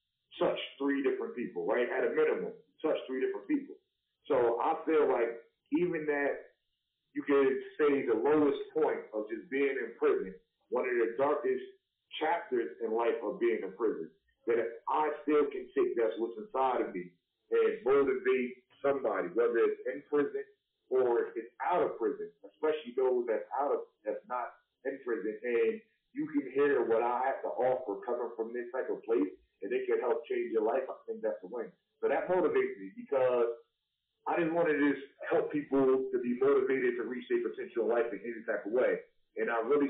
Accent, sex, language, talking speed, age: American, male, English, 185 wpm, 40-59